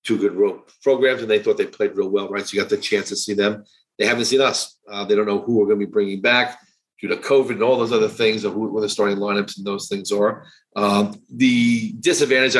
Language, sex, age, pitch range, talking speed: English, male, 40-59, 105-120 Hz, 260 wpm